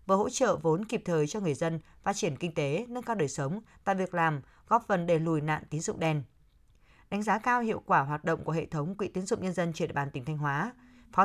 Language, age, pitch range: Vietnamese, 20-39, 155-215 Hz